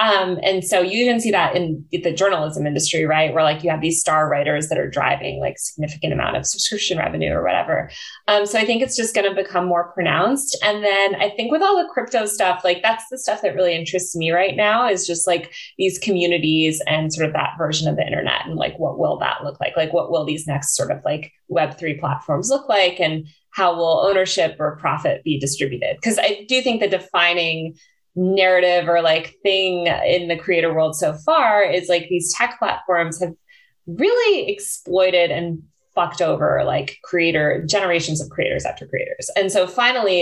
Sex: female